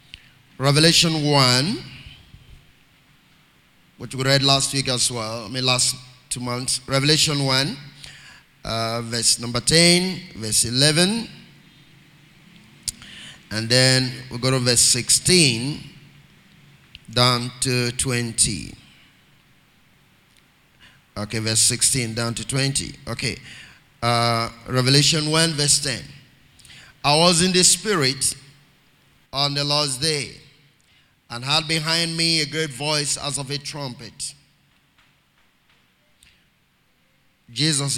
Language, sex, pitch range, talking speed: English, male, 130-160 Hz, 105 wpm